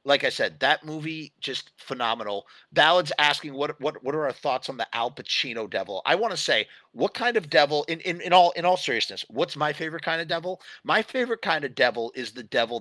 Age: 30-49